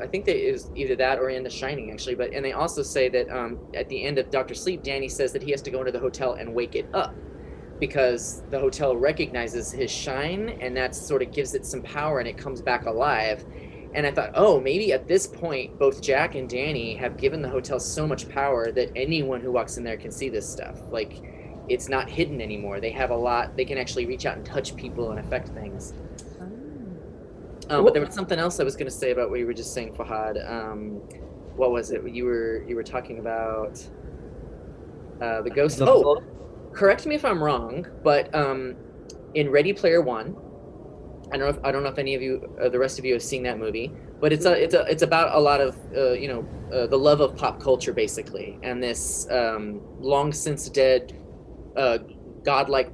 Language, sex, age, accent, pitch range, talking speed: English, male, 20-39, American, 115-145 Hz, 225 wpm